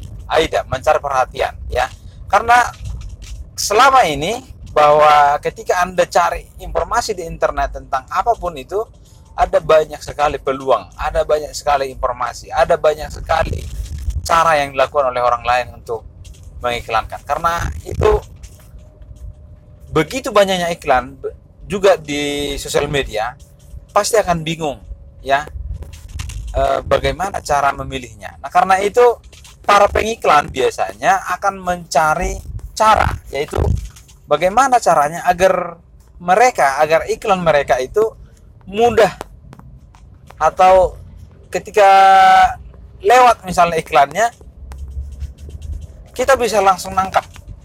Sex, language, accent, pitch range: male, English, Indonesian, 125-205 Hz